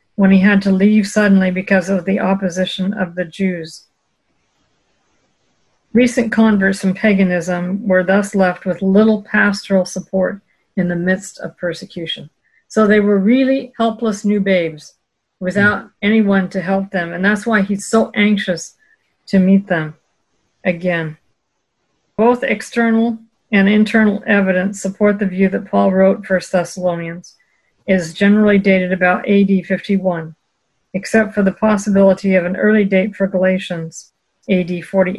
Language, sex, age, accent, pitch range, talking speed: English, female, 50-69, American, 185-215 Hz, 140 wpm